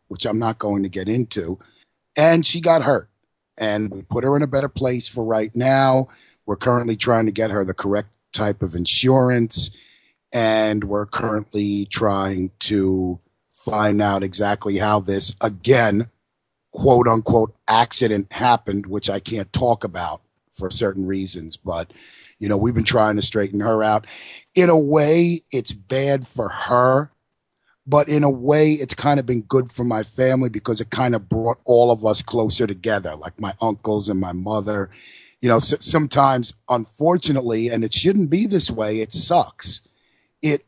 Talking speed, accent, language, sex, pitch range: 170 wpm, American, English, male, 105-135 Hz